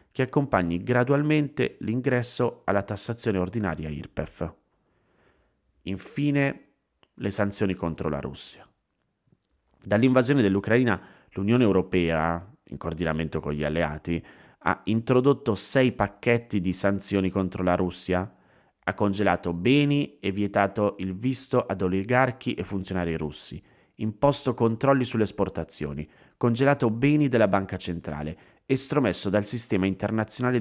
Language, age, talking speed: Italian, 30-49, 110 wpm